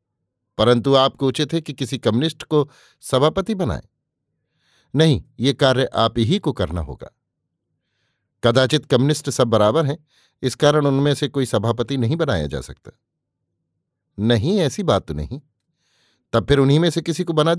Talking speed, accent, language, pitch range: 105 wpm, native, Hindi, 120-160 Hz